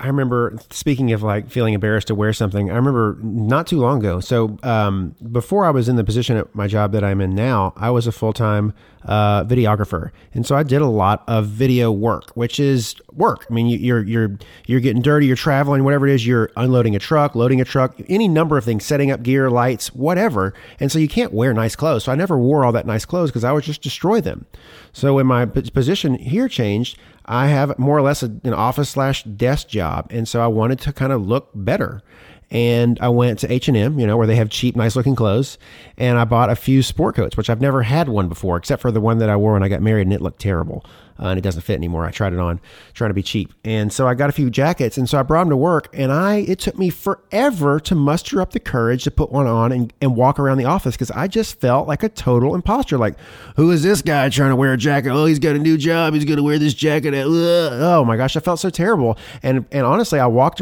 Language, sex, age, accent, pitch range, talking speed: English, male, 30-49, American, 110-145 Hz, 255 wpm